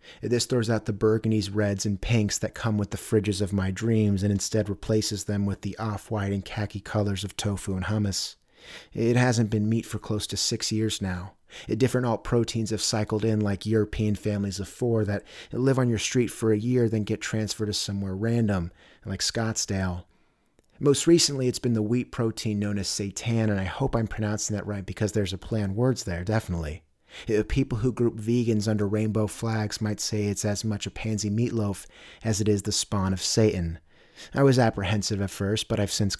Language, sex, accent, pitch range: English, male, American, 100-115 Hz